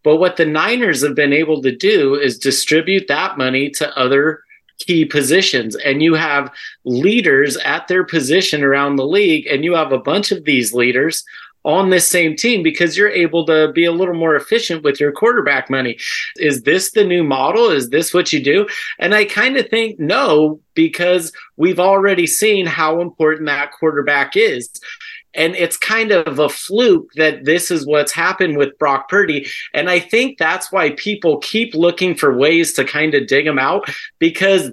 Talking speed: 185 wpm